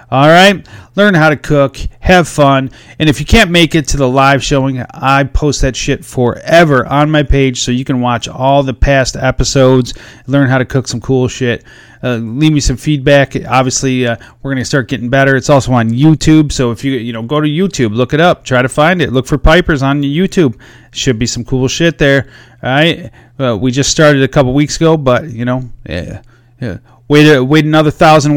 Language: English